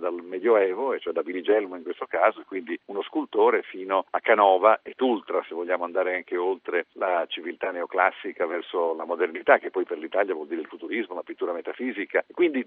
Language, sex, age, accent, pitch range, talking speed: Italian, male, 50-69, native, 285-440 Hz, 185 wpm